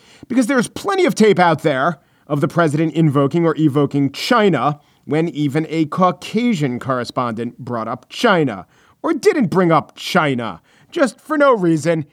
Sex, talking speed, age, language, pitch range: male, 155 wpm, 40-59, English, 135-190 Hz